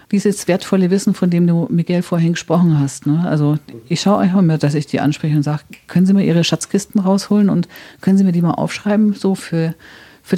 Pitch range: 165-205 Hz